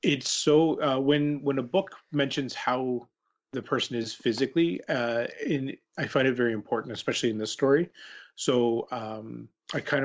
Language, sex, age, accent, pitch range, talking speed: English, male, 30-49, American, 110-140 Hz, 165 wpm